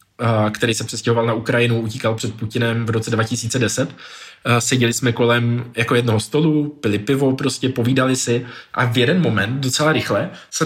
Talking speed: 165 wpm